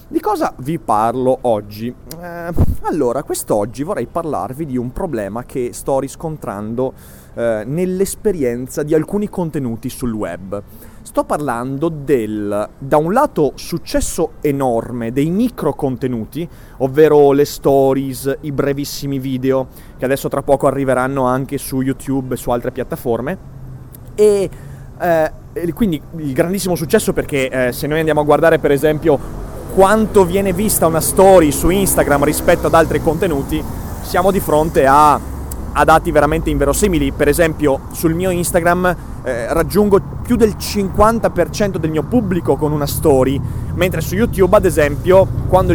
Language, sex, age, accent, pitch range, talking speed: Italian, male, 30-49, native, 130-170 Hz, 145 wpm